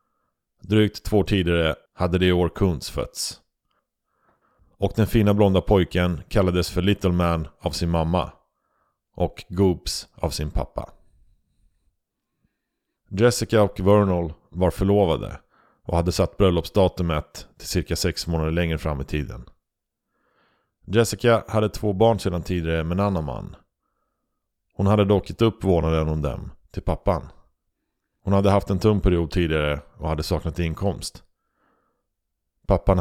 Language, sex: Swedish, male